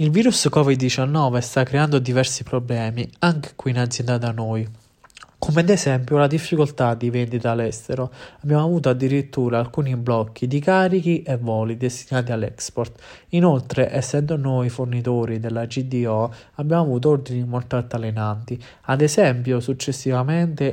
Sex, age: male, 20-39